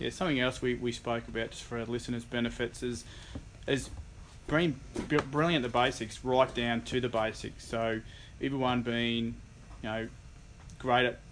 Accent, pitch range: Australian, 110-125 Hz